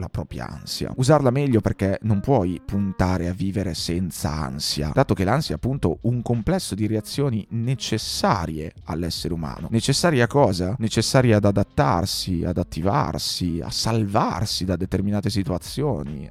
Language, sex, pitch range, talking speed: Italian, male, 90-110 Hz, 135 wpm